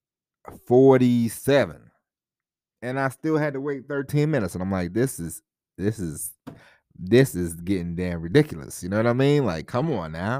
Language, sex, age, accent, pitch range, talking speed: English, male, 30-49, American, 85-110 Hz, 175 wpm